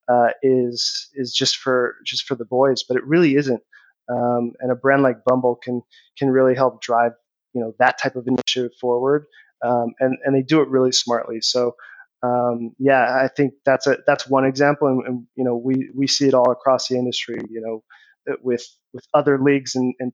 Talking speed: 205 wpm